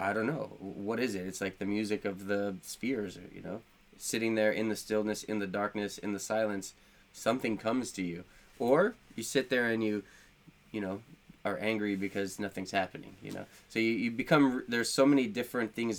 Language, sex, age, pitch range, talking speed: English, male, 20-39, 95-110 Hz, 205 wpm